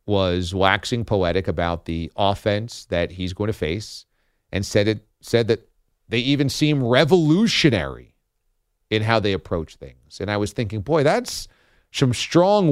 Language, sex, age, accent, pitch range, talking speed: English, male, 40-59, American, 105-135 Hz, 155 wpm